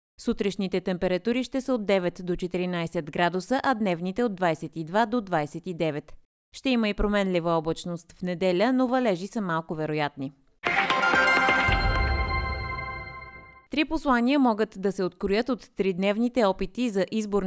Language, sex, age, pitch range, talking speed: Bulgarian, female, 20-39, 170-220 Hz, 130 wpm